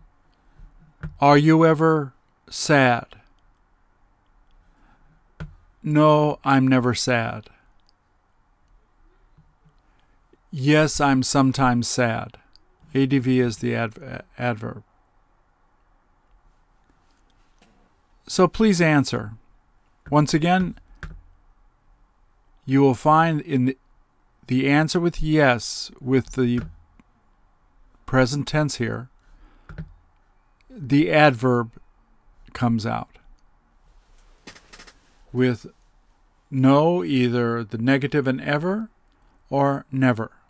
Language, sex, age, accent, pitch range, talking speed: English, male, 50-69, American, 105-150 Hz, 70 wpm